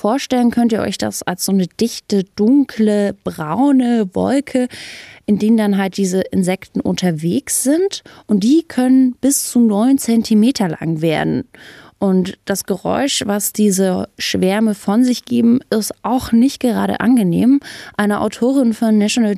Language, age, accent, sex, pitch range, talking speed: German, 20-39, German, female, 185-235 Hz, 145 wpm